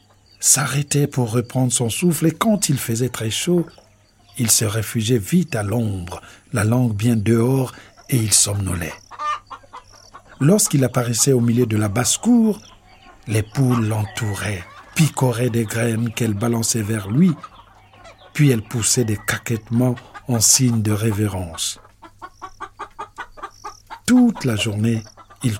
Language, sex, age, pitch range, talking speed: French, male, 50-69, 105-135 Hz, 130 wpm